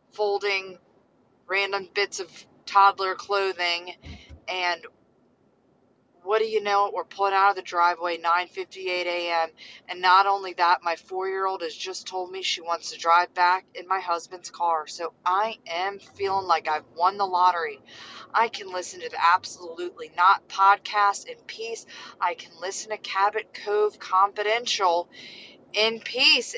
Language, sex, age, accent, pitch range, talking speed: English, female, 30-49, American, 180-240 Hz, 150 wpm